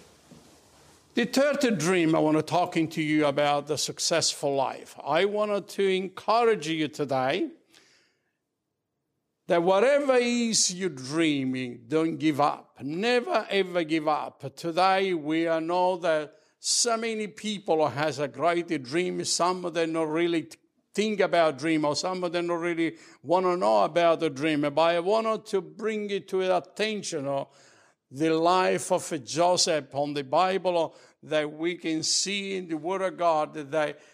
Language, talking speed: English, 160 wpm